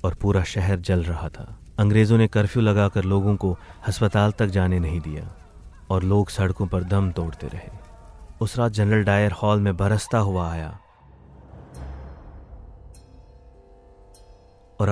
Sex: male